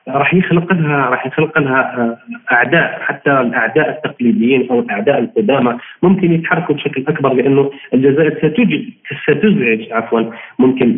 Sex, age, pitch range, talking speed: male, 40-59, 120-145 Hz, 110 wpm